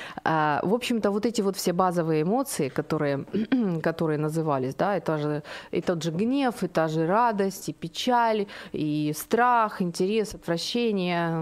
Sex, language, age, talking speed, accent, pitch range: female, Ukrainian, 30-49, 145 wpm, native, 170-240 Hz